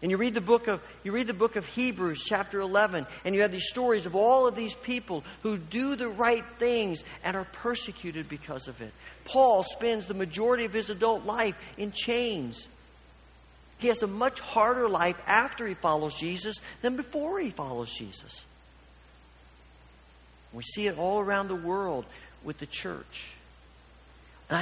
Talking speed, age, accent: 175 wpm, 50-69, American